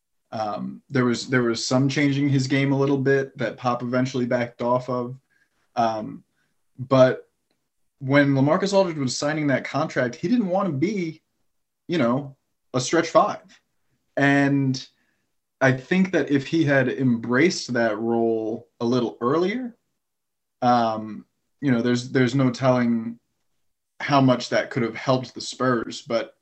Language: English